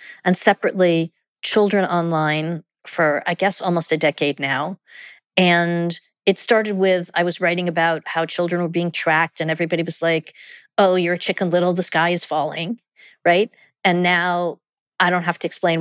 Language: English